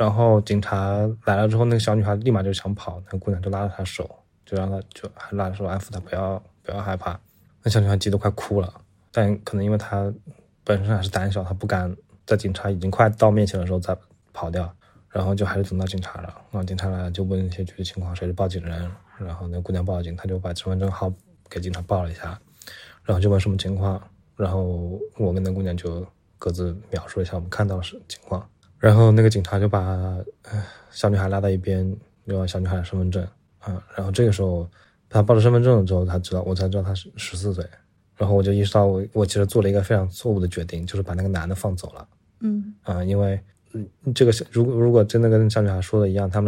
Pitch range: 90-105 Hz